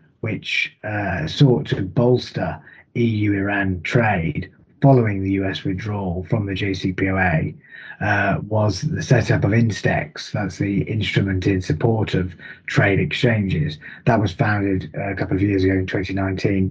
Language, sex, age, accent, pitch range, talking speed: English, male, 30-49, British, 95-120 Hz, 135 wpm